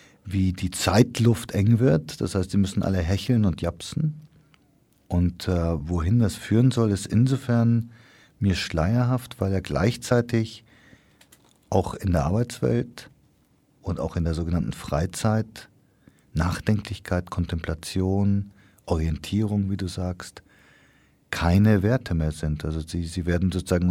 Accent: German